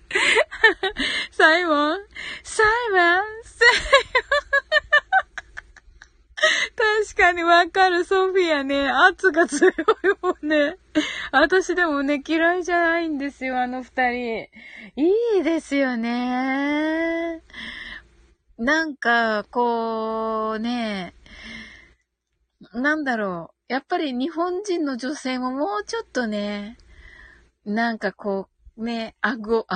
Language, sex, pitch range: Japanese, female, 225-340 Hz